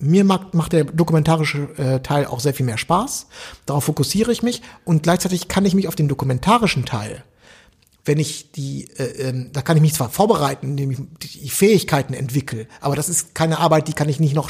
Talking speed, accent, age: 195 wpm, German, 60-79